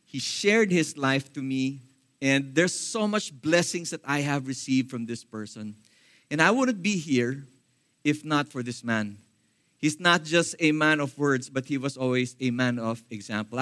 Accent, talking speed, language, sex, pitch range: Filipino, 190 wpm, English, male, 130-175 Hz